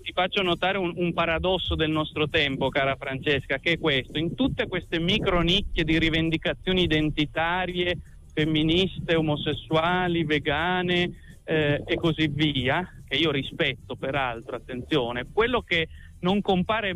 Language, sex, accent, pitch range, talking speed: Italian, male, native, 145-180 Hz, 135 wpm